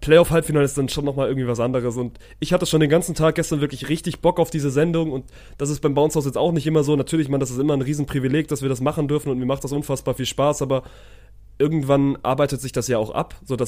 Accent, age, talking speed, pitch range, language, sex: German, 20-39, 270 wpm, 130-150 Hz, German, male